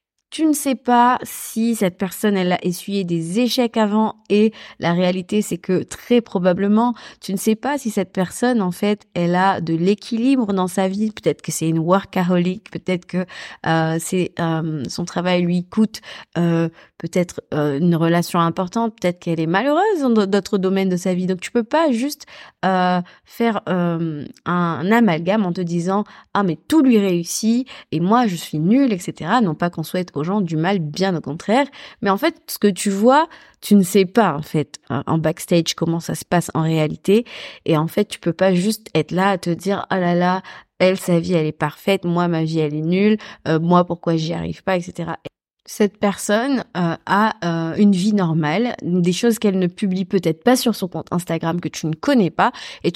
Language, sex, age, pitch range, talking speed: French, female, 20-39, 170-215 Hz, 215 wpm